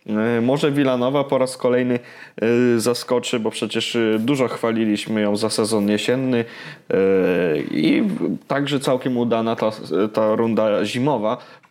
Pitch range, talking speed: 110-130 Hz, 120 wpm